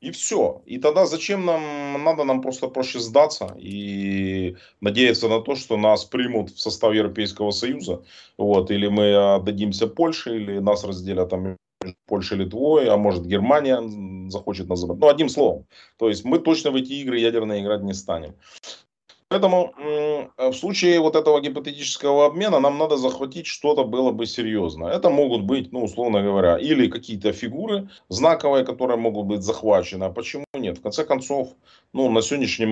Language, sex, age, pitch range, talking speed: Russian, male, 30-49, 100-140 Hz, 165 wpm